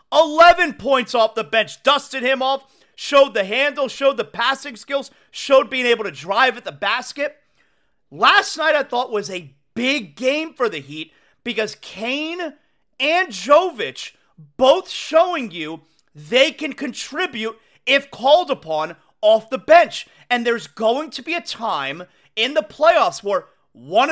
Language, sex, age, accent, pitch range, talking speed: English, male, 30-49, American, 225-295 Hz, 155 wpm